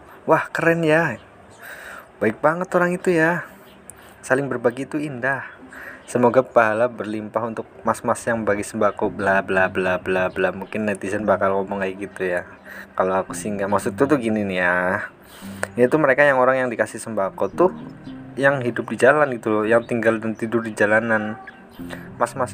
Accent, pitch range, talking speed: native, 100-130 Hz, 160 wpm